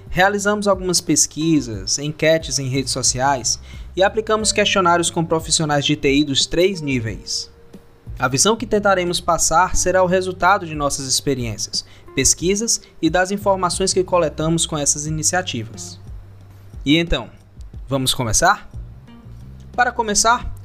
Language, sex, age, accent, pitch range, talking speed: Portuguese, male, 20-39, Brazilian, 115-185 Hz, 125 wpm